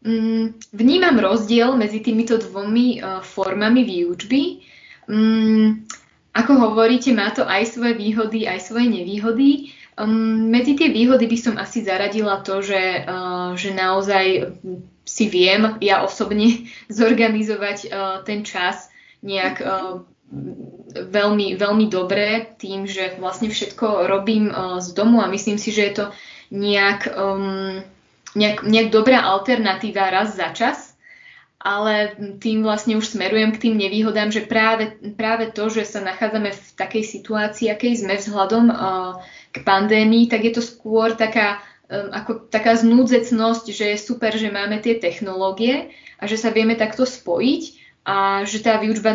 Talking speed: 145 wpm